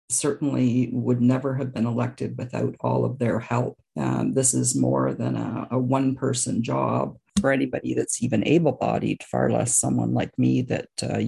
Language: English